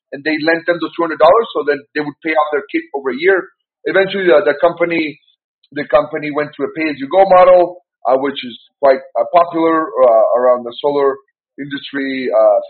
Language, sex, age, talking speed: English, male, 30-49, 215 wpm